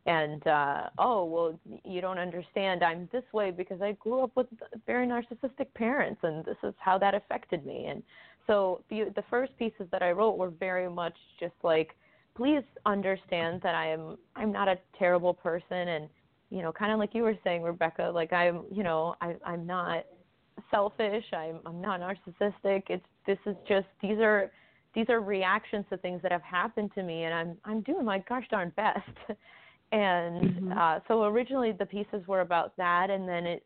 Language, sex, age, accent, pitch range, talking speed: English, female, 20-39, American, 170-205 Hz, 190 wpm